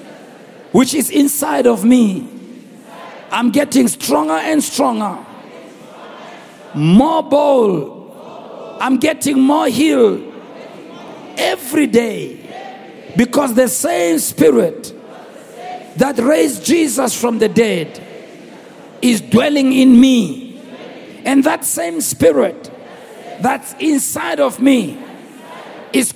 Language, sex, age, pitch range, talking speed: English, male, 50-69, 255-320 Hz, 95 wpm